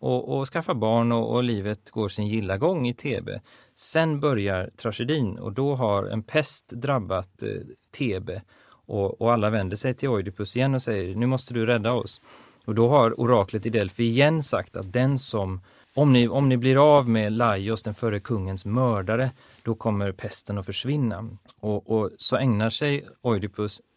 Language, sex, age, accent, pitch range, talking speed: Swedish, male, 30-49, native, 100-120 Hz, 185 wpm